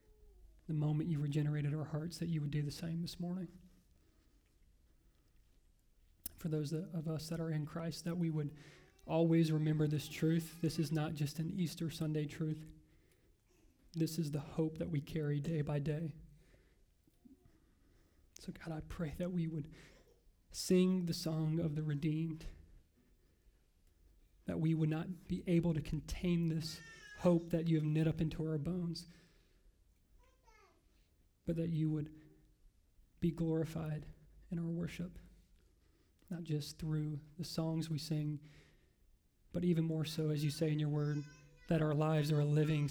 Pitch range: 145-165 Hz